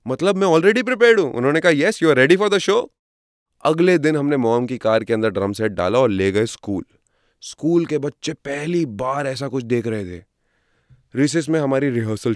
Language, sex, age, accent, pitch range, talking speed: Hindi, male, 20-39, native, 110-150 Hz, 210 wpm